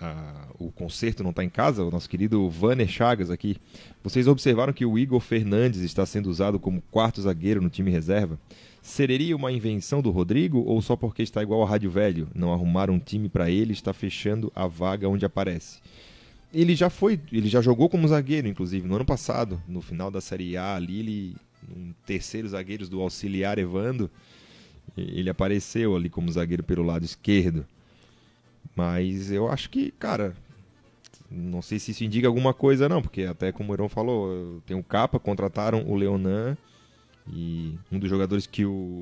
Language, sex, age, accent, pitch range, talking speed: Portuguese, male, 30-49, Brazilian, 90-110 Hz, 180 wpm